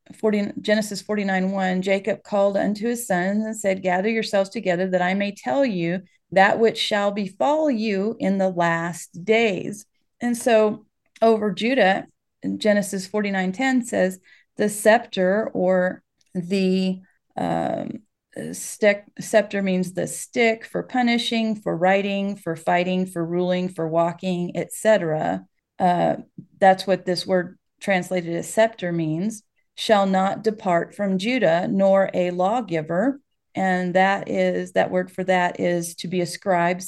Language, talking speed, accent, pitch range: English, 135 wpm, American, 180-215 Hz